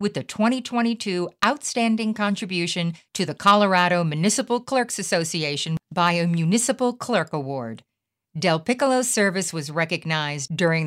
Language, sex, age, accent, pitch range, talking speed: English, female, 50-69, American, 155-205 Hz, 120 wpm